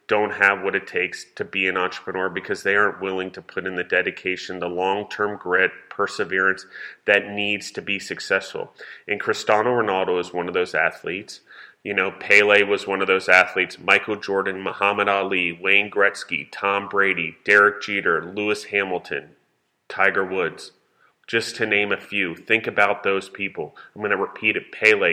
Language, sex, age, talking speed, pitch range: English, male, 30-49, 170 wpm, 95-105 Hz